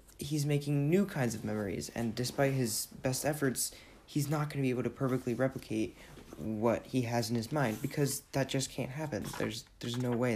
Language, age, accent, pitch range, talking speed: English, 20-39, American, 110-140 Hz, 195 wpm